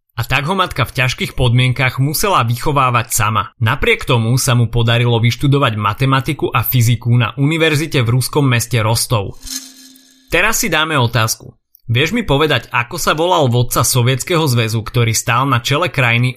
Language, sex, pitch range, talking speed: Slovak, male, 115-150 Hz, 160 wpm